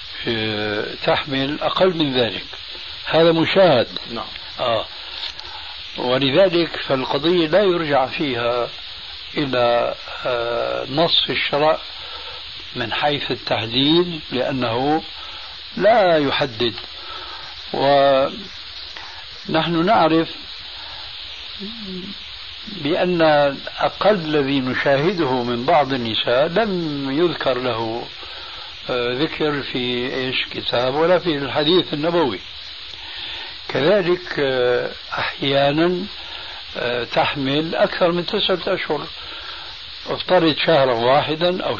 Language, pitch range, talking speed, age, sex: Arabic, 125-170 Hz, 75 wpm, 60-79, male